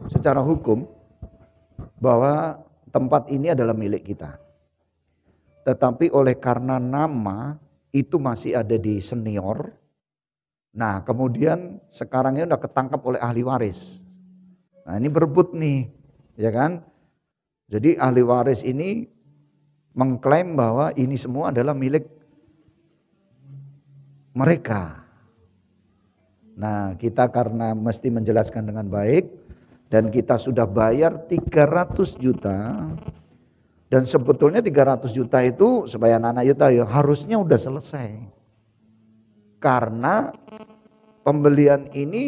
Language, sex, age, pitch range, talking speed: Indonesian, male, 50-69, 115-150 Hz, 100 wpm